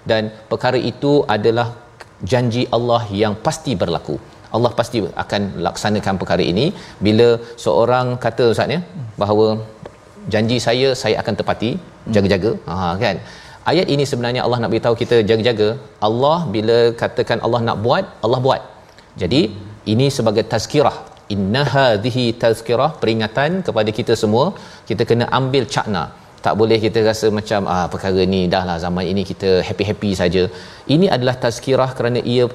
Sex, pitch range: male, 105-125 Hz